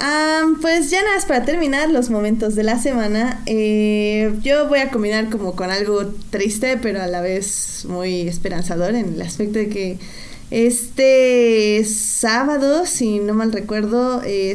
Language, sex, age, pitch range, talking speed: Spanish, female, 20-39, 195-235 Hz, 155 wpm